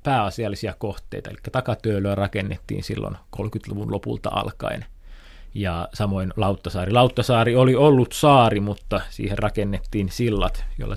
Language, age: Finnish, 20-39